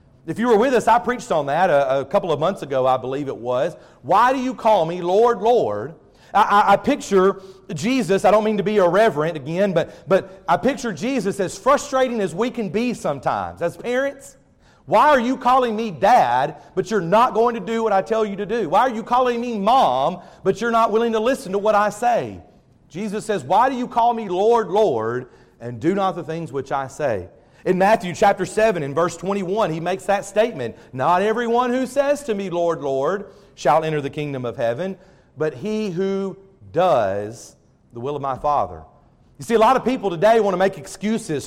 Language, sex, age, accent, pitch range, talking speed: English, male, 40-59, American, 165-225 Hz, 215 wpm